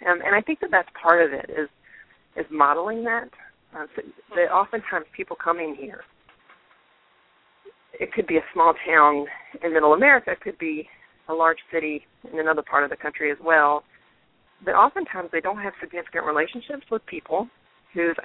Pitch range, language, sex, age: 150-200 Hz, English, female, 40-59